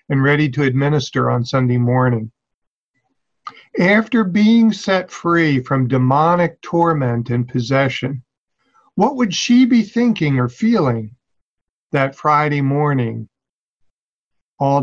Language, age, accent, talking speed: English, 50-69, American, 110 wpm